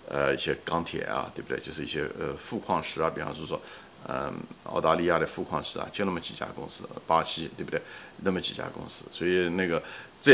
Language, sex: Chinese, male